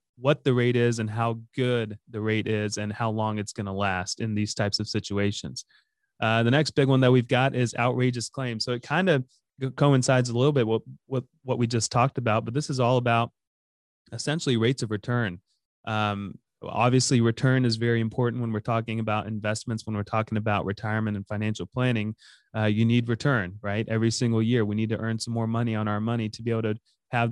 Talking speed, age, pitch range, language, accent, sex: 215 wpm, 30-49, 110-125 Hz, English, American, male